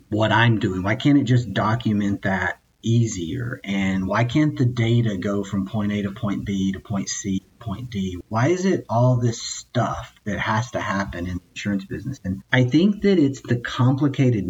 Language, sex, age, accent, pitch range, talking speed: English, male, 40-59, American, 100-125 Hz, 205 wpm